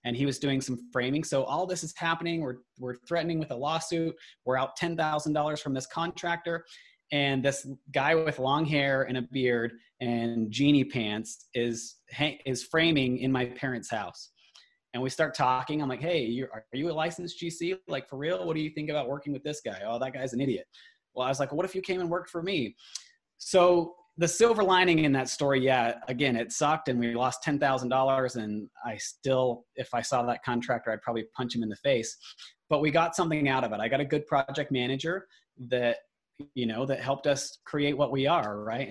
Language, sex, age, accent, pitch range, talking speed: English, male, 20-39, American, 120-160 Hz, 215 wpm